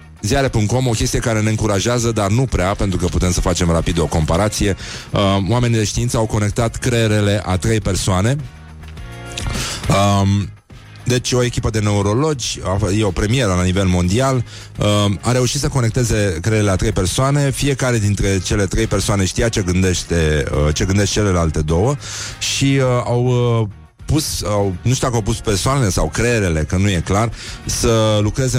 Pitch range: 90-120 Hz